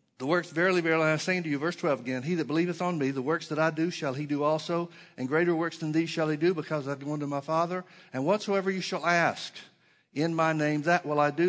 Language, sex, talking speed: English, male, 275 wpm